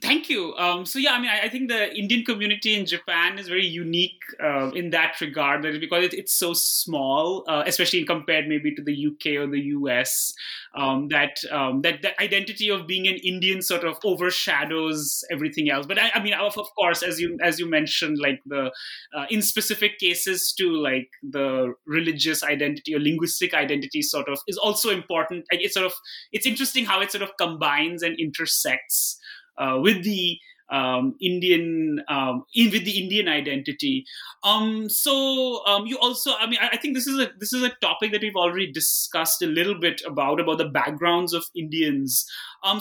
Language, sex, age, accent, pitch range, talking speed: English, male, 20-39, Indian, 160-210 Hz, 195 wpm